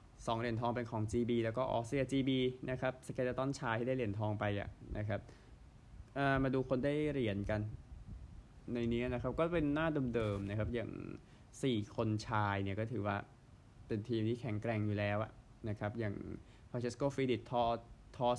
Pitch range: 105-125 Hz